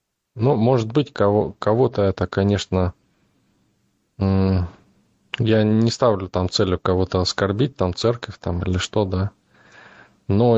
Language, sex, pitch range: Russian, male, 95-110 Hz